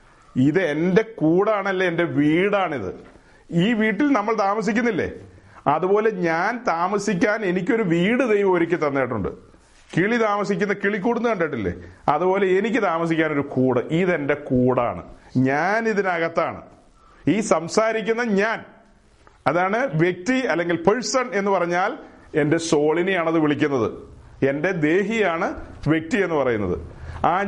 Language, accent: Malayalam, native